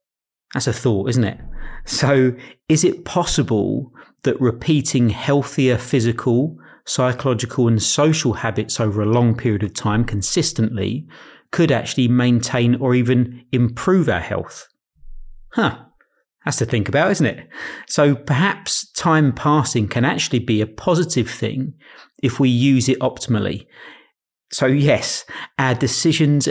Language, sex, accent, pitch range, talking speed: English, male, British, 115-140 Hz, 130 wpm